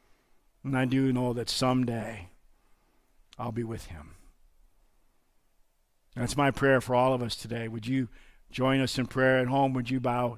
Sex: male